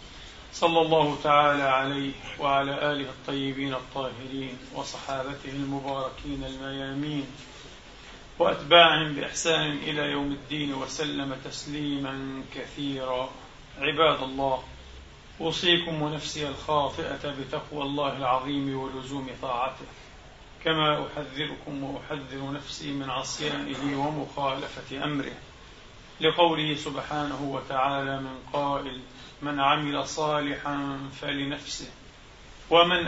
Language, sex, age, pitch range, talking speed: Arabic, male, 40-59, 135-150 Hz, 85 wpm